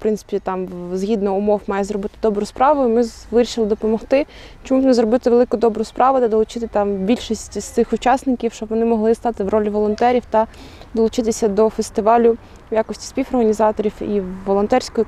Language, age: Ukrainian, 20-39